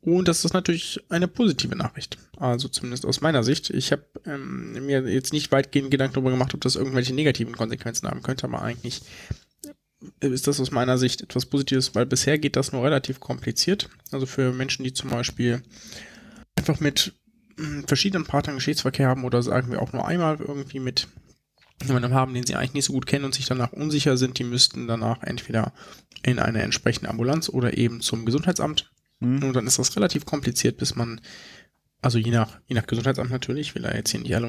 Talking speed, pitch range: 195 wpm, 125-150 Hz